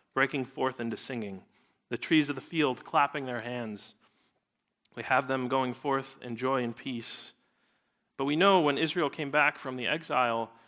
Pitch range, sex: 115-145 Hz, male